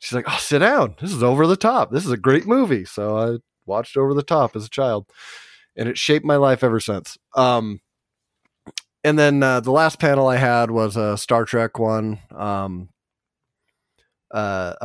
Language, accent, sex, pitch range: English, American, male, 105-130 Hz